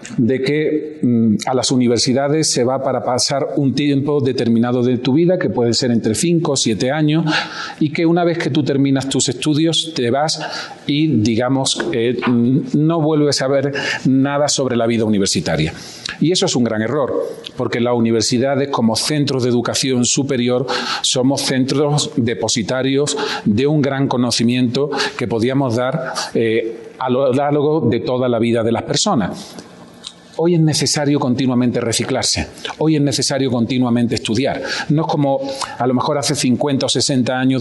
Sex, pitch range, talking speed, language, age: male, 120-150 Hz, 165 wpm, Spanish, 40-59